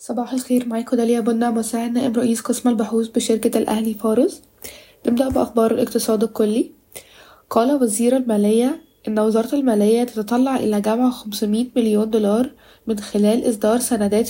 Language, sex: Arabic, female